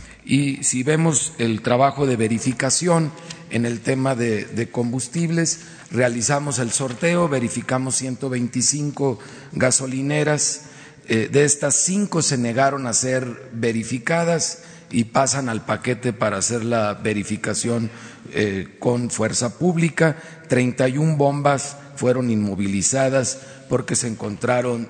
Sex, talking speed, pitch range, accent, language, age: male, 115 wpm, 120-145 Hz, Mexican, Spanish, 40-59